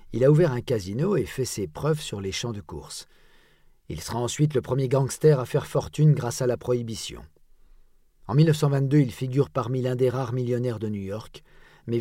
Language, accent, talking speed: French, French, 200 wpm